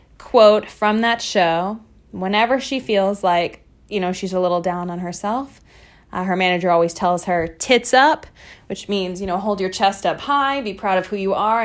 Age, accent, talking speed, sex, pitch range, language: 20-39, American, 200 wpm, female, 185-230 Hz, English